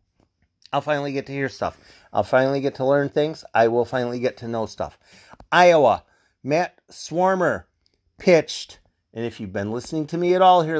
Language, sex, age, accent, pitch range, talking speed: English, male, 40-59, American, 115-150 Hz, 185 wpm